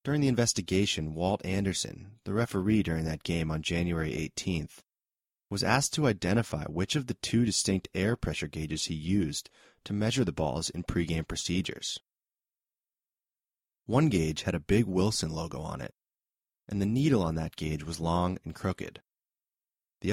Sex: male